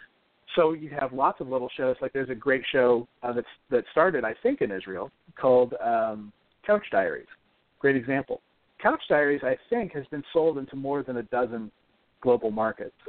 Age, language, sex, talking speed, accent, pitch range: 40-59, English, male, 185 wpm, American, 120-155 Hz